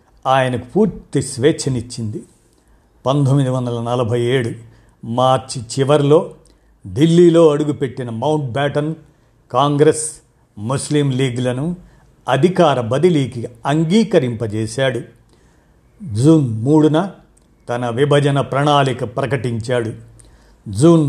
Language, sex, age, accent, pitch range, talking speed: Telugu, male, 50-69, native, 120-155 Hz, 75 wpm